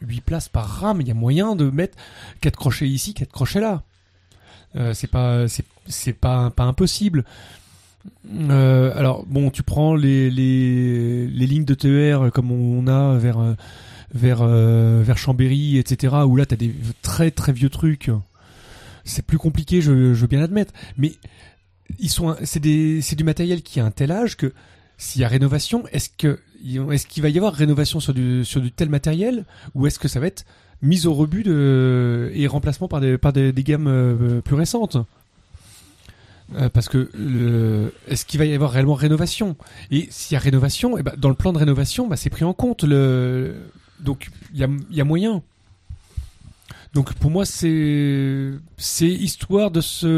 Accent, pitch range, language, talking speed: French, 120-150 Hz, French, 185 wpm